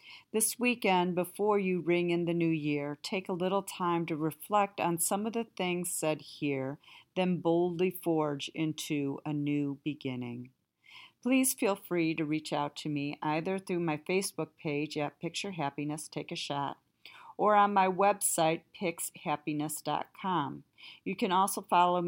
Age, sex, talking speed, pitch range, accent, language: 50-69, female, 155 wpm, 150-185 Hz, American, English